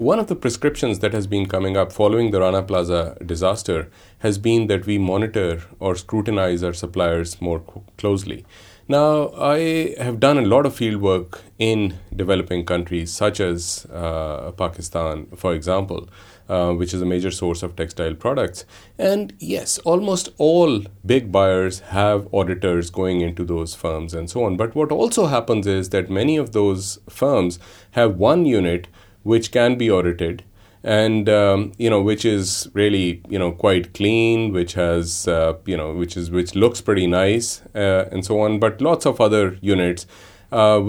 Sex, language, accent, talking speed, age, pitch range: male, English, Indian, 170 wpm, 30-49, 90-115 Hz